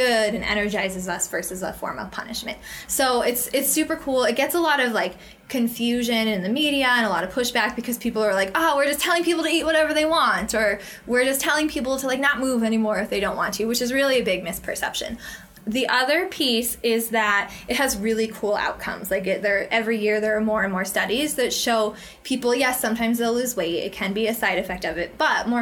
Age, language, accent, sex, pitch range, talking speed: 20-39, English, American, female, 205-250 Hz, 240 wpm